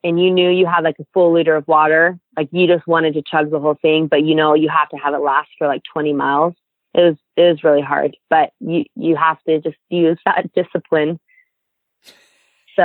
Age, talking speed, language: 20-39, 230 wpm, English